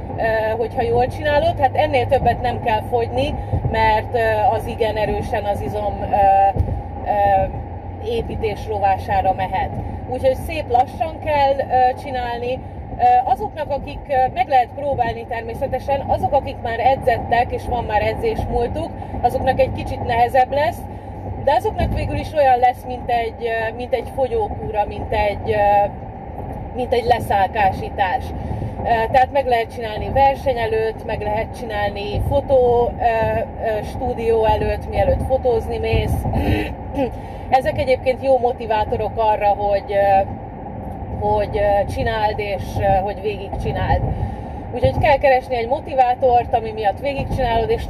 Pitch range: 220-270 Hz